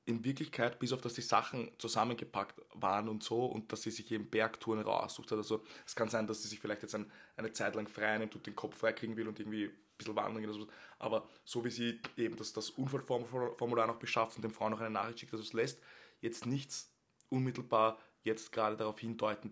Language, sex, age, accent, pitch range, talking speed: German, male, 20-39, Austrian, 110-120 Hz, 220 wpm